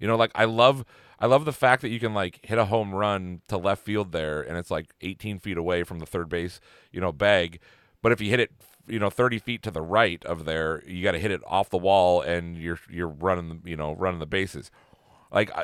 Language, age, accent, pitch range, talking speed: English, 40-59, American, 85-115 Hz, 255 wpm